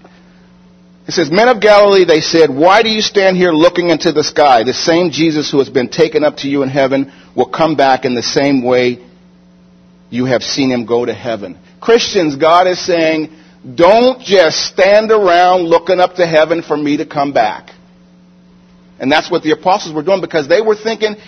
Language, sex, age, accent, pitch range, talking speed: English, male, 50-69, American, 135-225 Hz, 195 wpm